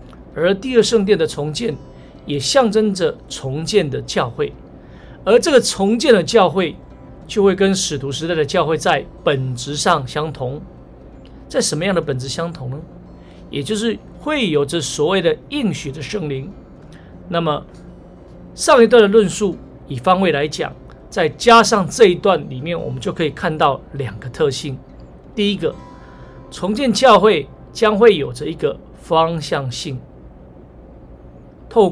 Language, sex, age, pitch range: Chinese, male, 50-69, 130-210 Hz